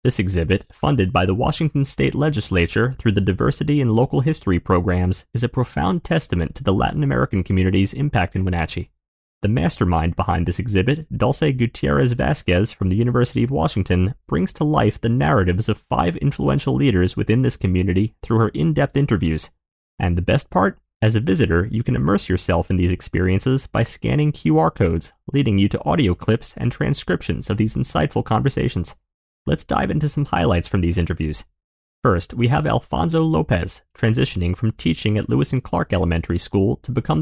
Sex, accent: male, American